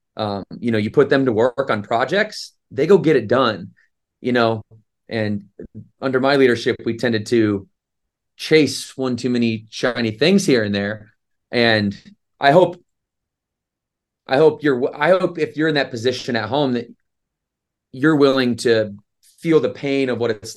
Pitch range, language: 115-150 Hz, English